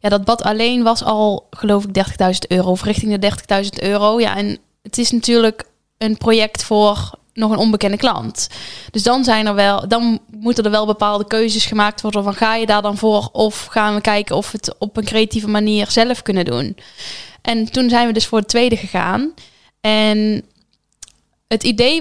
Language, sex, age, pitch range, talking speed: Dutch, female, 10-29, 205-230 Hz, 195 wpm